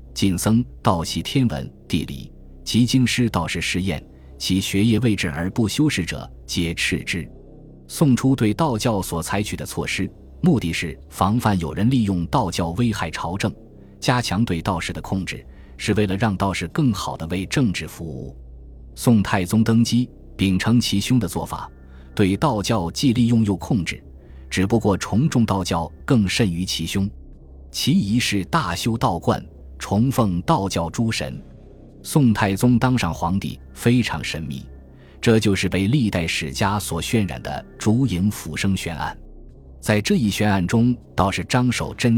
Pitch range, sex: 85-115 Hz, male